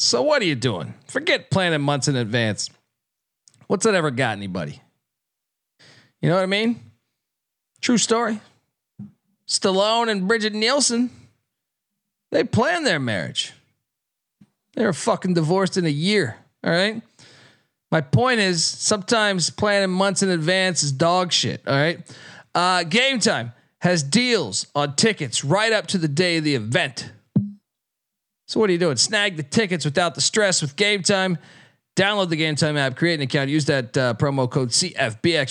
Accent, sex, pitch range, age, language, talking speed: American, male, 140-205 Hz, 40-59, English, 160 wpm